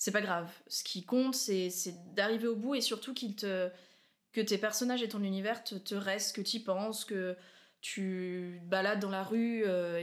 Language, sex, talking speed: French, female, 210 wpm